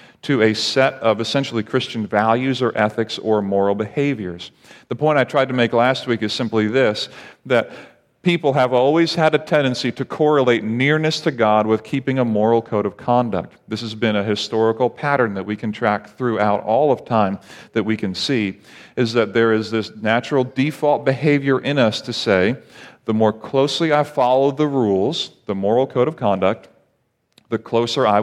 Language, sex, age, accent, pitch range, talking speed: English, male, 40-59, American, 110-135 Hz, 185 wpm